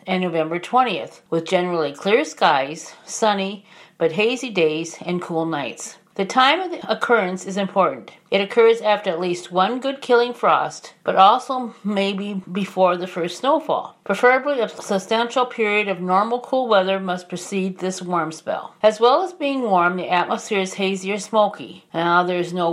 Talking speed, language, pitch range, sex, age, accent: 170 wpm, English, 180-230 Hz, female, 40-59, American